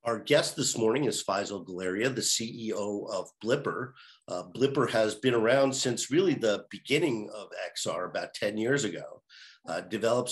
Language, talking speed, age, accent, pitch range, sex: English, 165 wpm, 50-69, American, 105-130 Hz, male